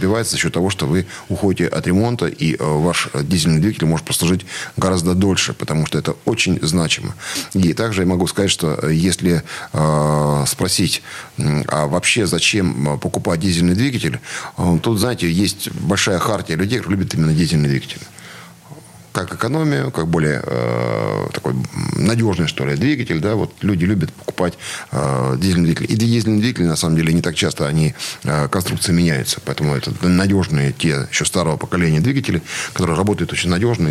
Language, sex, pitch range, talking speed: Russian, male, 80-100 Hz, 160 wpm